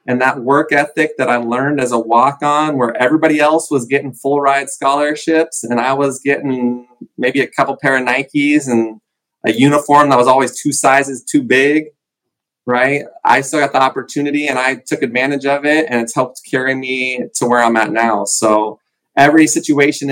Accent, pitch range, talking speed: American, 120-140 Hz, 185 wpm